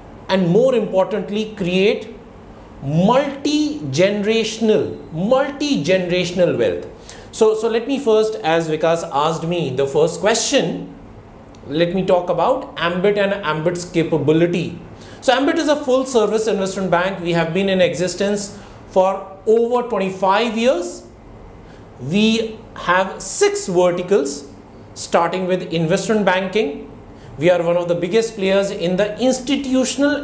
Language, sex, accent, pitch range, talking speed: English, male, Indian, 175-235 Hz, 125 wpm